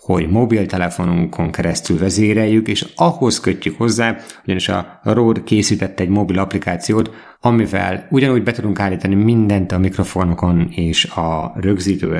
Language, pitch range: Hungarian, 95-115 Hz